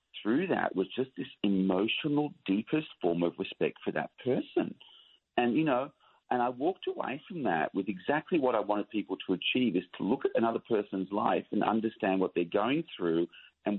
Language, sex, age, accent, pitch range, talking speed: English, male, 40-59, Australian, 85-105 Hz, 190 wpm